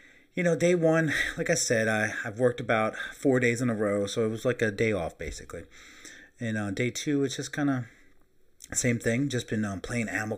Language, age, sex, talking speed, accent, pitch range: English, 30-49, male, 225 wpm, American, 100-125 Hz